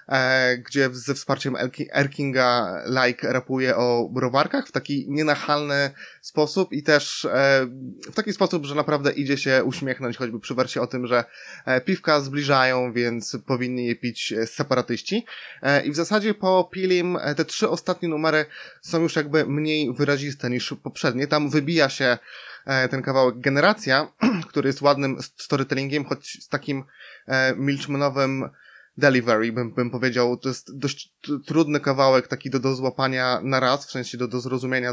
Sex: male